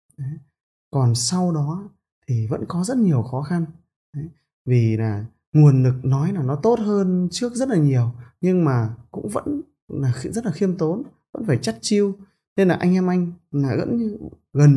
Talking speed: 190 wpm